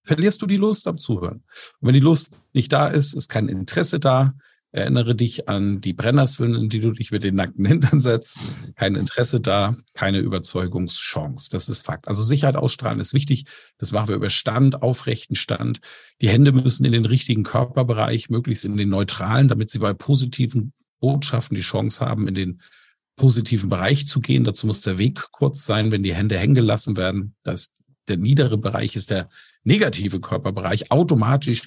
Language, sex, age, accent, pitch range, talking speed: German, male, 40-59, German, 110-140 Hz, 185 wpm